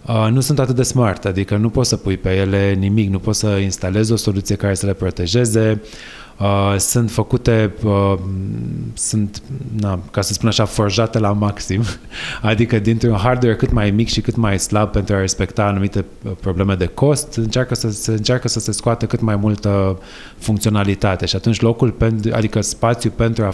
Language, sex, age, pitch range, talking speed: Romanian, male, 20-39, 100-115 Hz, 175 wpm